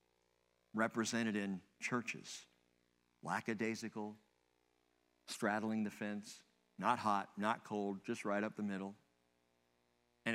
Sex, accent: male, American